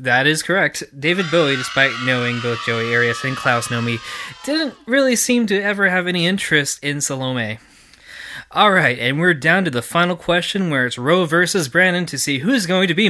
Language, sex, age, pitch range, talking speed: English, male, 20-39, 120-180 Hz, 195 wpm